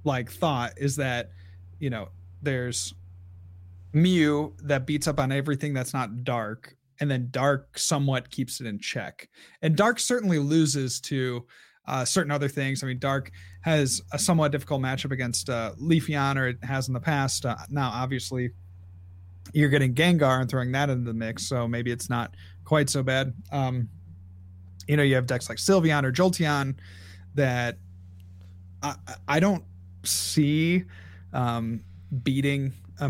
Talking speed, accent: 160 wpm, American